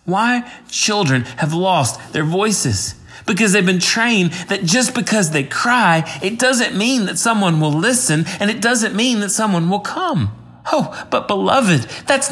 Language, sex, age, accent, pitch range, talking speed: English, male, 30-49, American, 125-200 Hz, 165 wpm